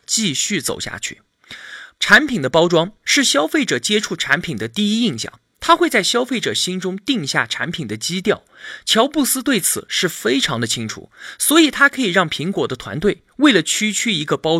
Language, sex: Chinese, male